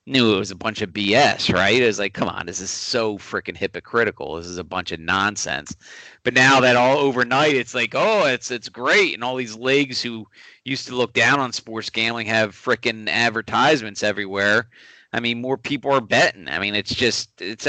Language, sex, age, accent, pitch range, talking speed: English, male, 40-59, American, 110-135 Hz, 210 wpm